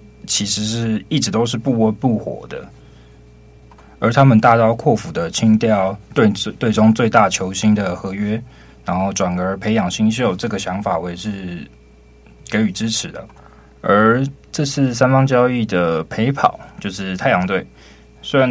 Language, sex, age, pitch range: Chinese, male, 20-39, 85-115 Hz